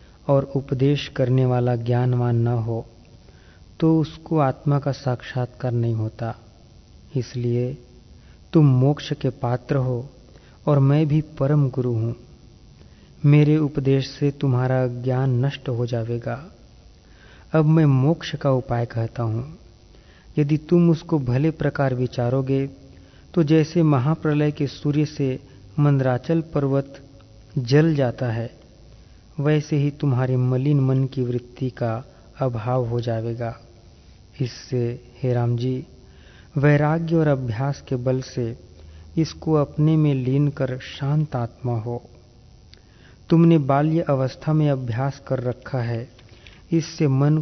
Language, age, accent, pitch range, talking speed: Hindi, 40-59, native, 120-145 Hz, 120 wpm